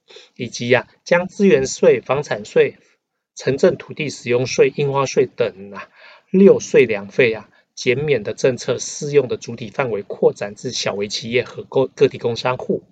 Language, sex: Chinese, male